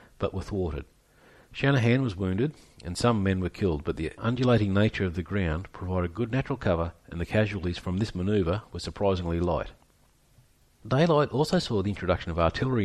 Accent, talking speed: Australian, 175 wpm